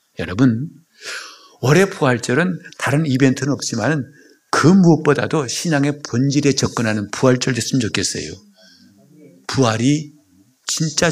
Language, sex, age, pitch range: Korean, male, 60-79, 120-175 Hz